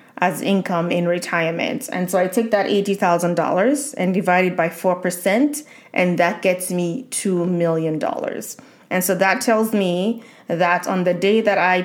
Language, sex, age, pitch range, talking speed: English, female, 20-39, 180-215 Hz, 160 wpm